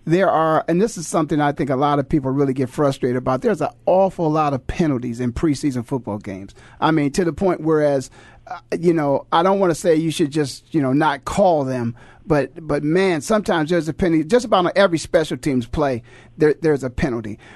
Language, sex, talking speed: English, male, 220 wpm